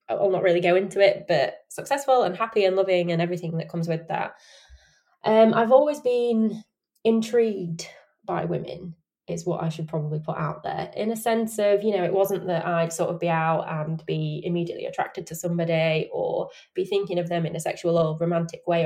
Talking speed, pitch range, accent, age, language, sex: 205 wpm, 175-215 Hz, British, 20-39, English, female